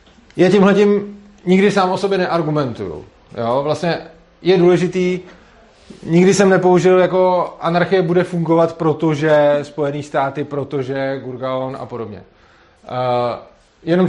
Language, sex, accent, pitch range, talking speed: Czech, male, native, 145-175 Hz, 115 wpm